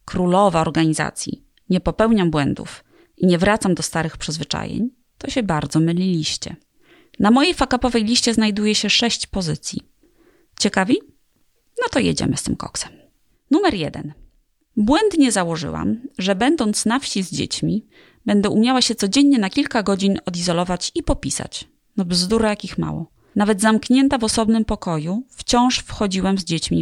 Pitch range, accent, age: 180-250 Hz, native, 30-49